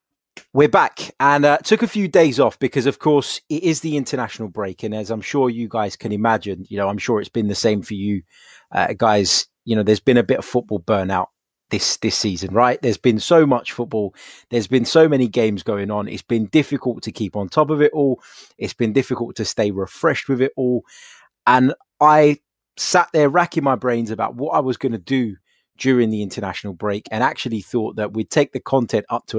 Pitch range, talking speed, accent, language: 105-130 Hz, 225 wpm, British, English